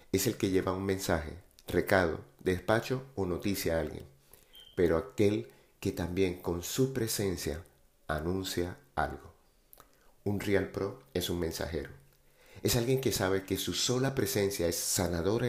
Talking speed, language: 145 wpm, Spanish